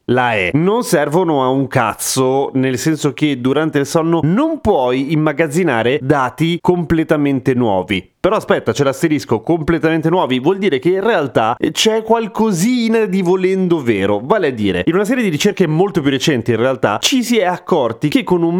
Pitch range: 120-180 Hz